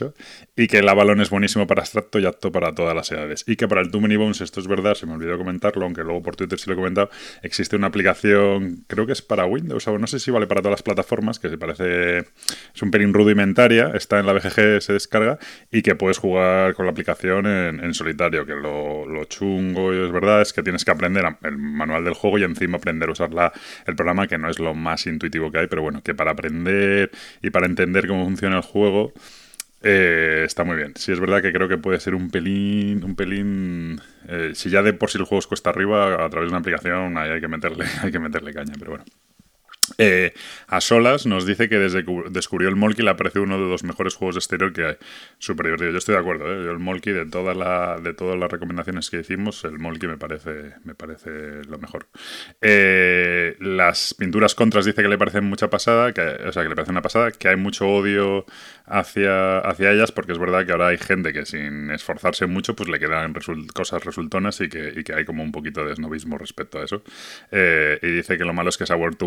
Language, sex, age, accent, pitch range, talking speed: Spanish, male, 20-39, Spanish, 85-100 Hz, 235 wpm